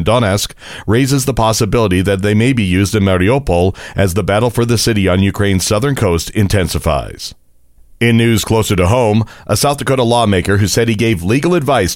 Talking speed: 185 wpm